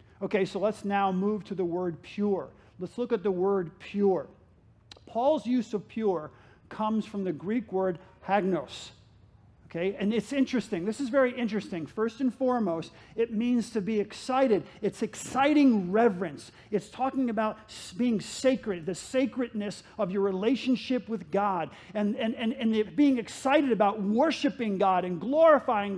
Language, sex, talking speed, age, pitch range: English, male, 155 wpm, 50-69, 205-275 Hz